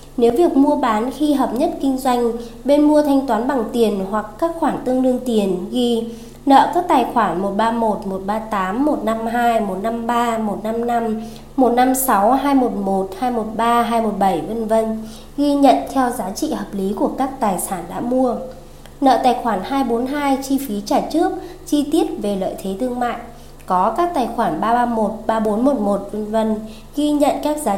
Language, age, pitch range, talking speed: Vietnamese, 20-39, 210-265 Hz, 165 wpm